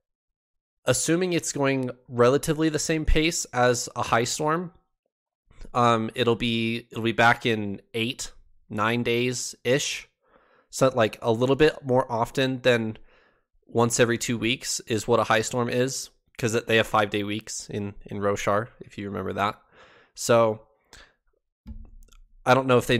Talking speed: 155 wpm